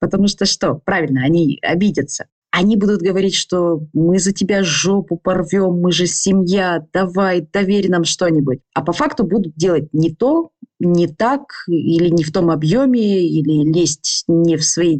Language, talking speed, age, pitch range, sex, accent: Russian, 165 wpm, 20-39, 165-220 Hz, female, native